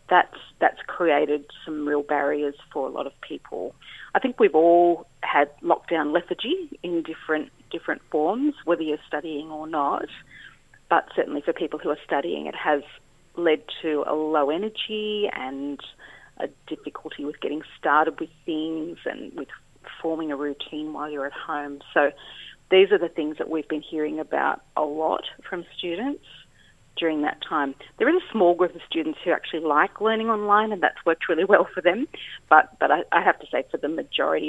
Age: 40-59